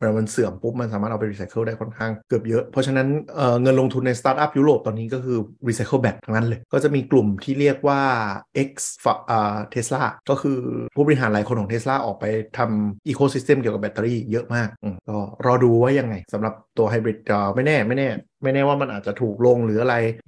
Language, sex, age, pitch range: Thai, male, 30-49, 110-130 Hz